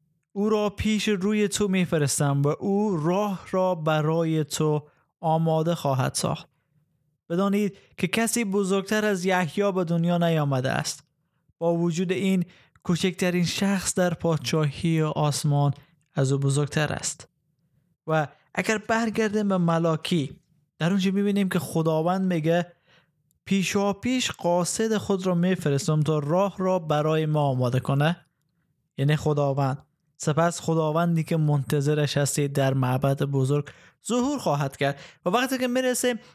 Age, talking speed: 20-39, 130 wpm